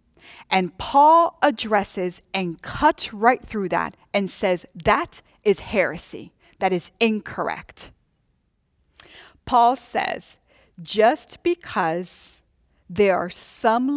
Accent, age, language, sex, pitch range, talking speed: American, 40-59, English, female, 180-235 Hz, 100 wpm